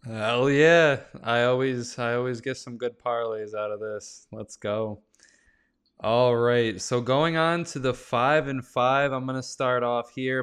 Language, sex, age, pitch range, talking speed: English, male, 20-39, 115-140 Hz, 165 wpm